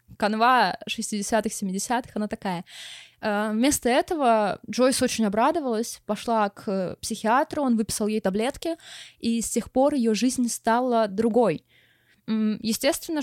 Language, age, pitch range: Russian, 20-39, 210-255 Hz